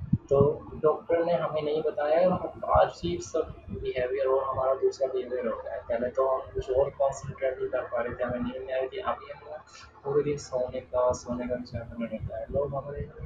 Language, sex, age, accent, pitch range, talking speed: Hindi, male, 20-39, native, 115-145 Hz, 195 wpm